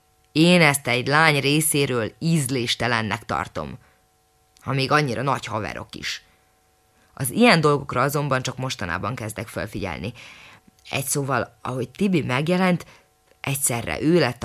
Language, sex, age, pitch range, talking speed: Hungarian, female, 20-39, 115-150 Hz, 120 wpm